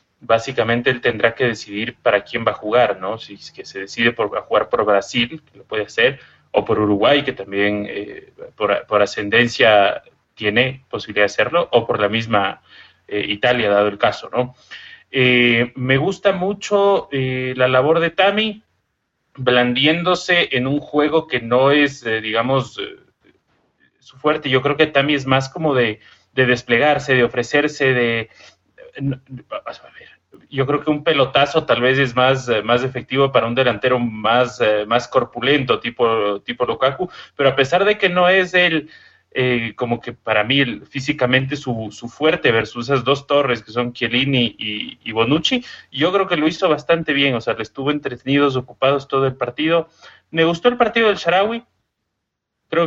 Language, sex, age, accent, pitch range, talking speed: Spanish, male, 30-49, Mexican, 120-155 Hz, 185 wpm